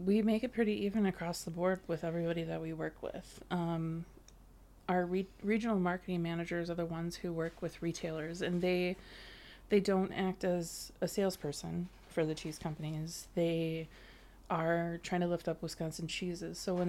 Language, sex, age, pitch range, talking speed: English, female, 20-39, 165-185 Hz, 175 wpm